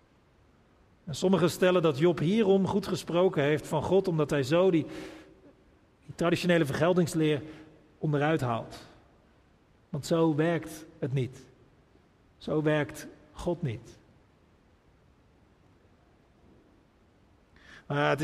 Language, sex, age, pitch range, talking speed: Dutch, male, 50-69, 140-165 Hz, 95 wpm